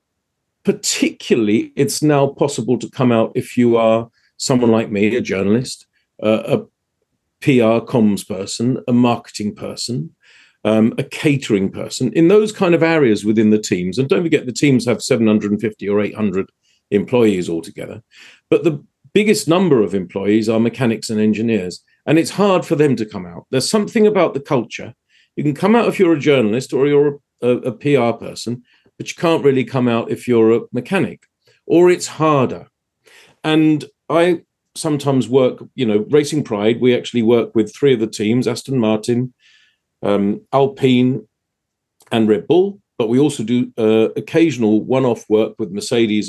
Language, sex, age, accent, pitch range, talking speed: English, male, 40-59, British, 110-150 Hz, 170 wpm